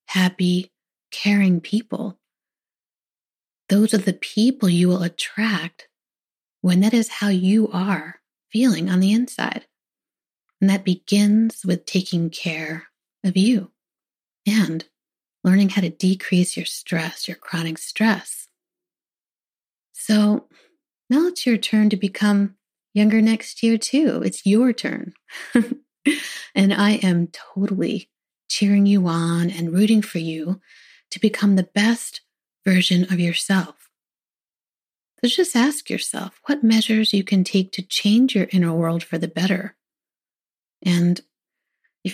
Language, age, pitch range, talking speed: English, 30-49, 180-220 Hz, 125 wpm